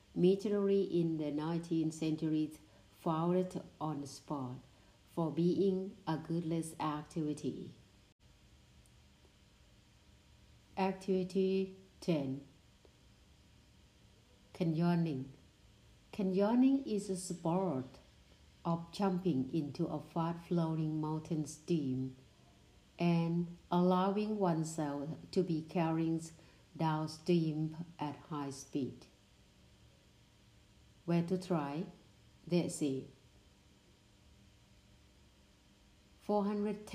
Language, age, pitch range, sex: Thai, 60-79, 145-180 Hz, female